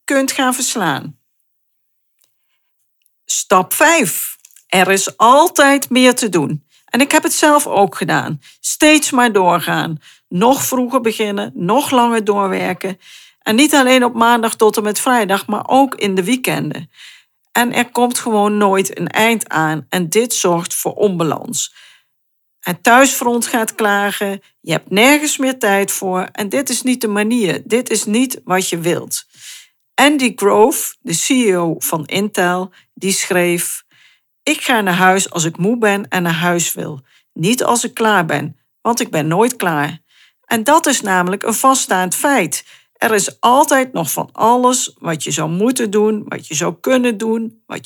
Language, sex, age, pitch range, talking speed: Dutch, female, 50-69, 185-250 Hz, 165 wpm